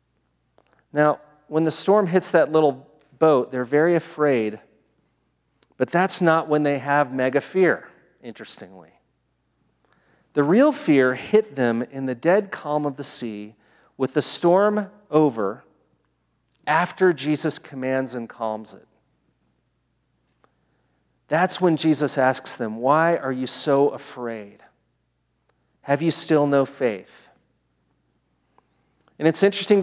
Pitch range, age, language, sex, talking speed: 125-175 Hz, 40-59, English, male, 120 wpm